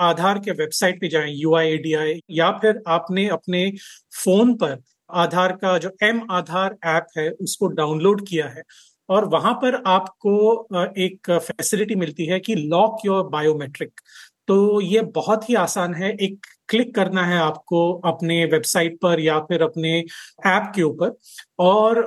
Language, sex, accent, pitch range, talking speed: Hindi, male, native, 165-210 Hz, 150 wpm